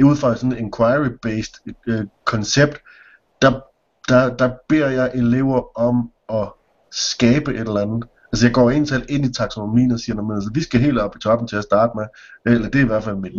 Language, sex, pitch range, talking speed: Danish, male, 110-130 Hz, 220 wpm